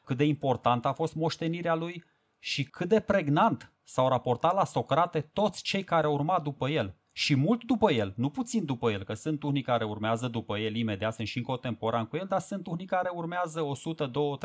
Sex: male